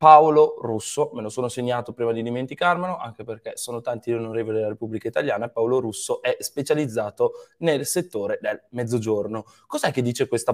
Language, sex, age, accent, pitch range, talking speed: Italian, male, 20-39, native, 115-160 Hz, 170 wpm